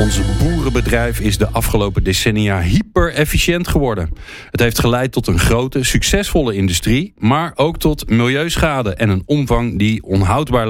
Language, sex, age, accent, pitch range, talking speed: Dutch, male, 40-59, Dutch, 100-145 Hz, 140 wpm